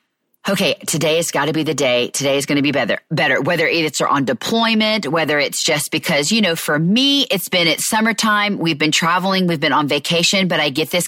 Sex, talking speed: female, 225 wpm